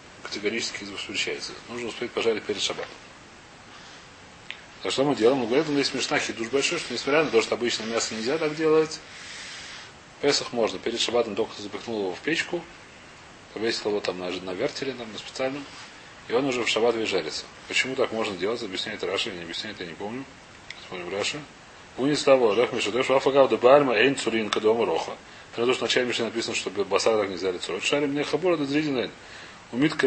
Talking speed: 170 wpm